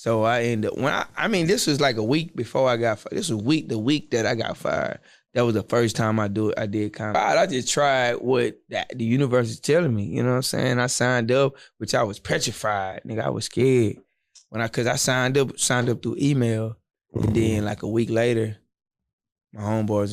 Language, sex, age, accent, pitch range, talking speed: English, male, 20-39, American, 110-125 Hz, 240 wpm